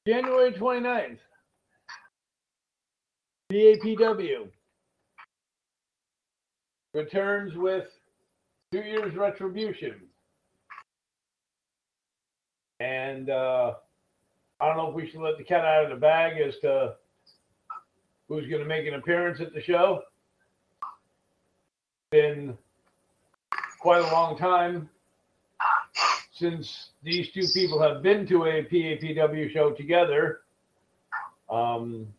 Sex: male